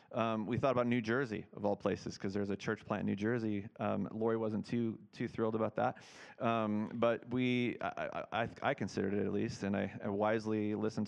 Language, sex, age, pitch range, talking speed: English, male, 30-49, 105-120 Hz, 215 wpm